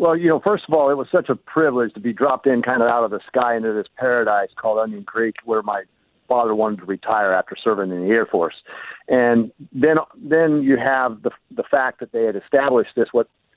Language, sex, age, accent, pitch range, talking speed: English, male, 50-69, American, 115-150 Hz, 235 wpm